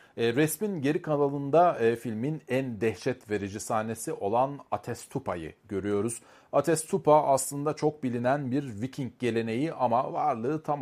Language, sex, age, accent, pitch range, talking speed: Turkish, male, 40-59, native, 115-155 Hz, 130 wpm